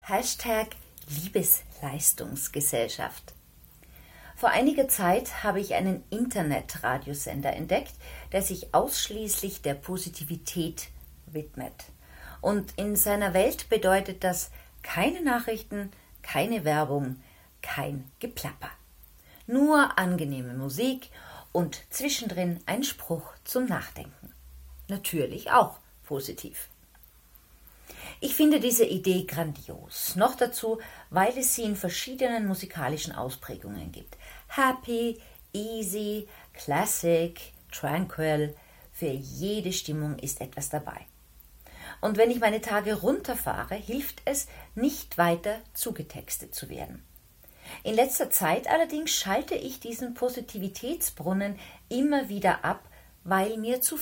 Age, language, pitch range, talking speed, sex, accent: 40-59, German, 150-230 Hz, 100 wpm, female, German